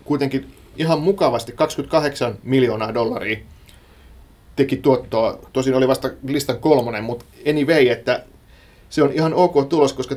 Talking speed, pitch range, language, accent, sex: 140 wpm, 115-140 Hz, Finnish, native, male